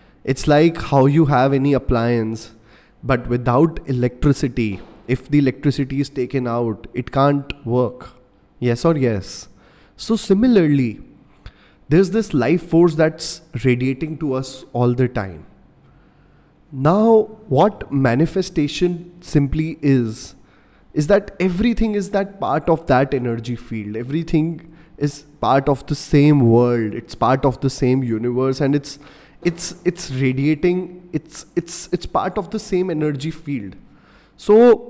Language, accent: English, Indian